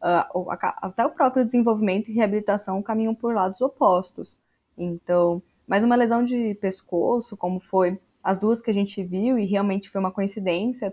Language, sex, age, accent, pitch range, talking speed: Portuguese, female, 10-29, Brazilian, 195-250 Hz, 165 wpm